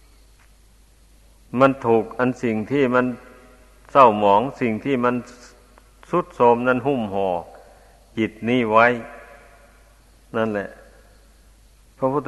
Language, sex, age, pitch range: Thai, male, 60-79, 110-125 Hz